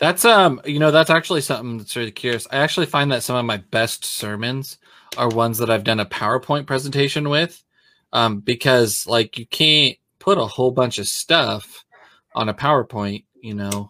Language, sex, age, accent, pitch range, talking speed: English, male, 20-39, American, 105-135 Hz, 190 wpm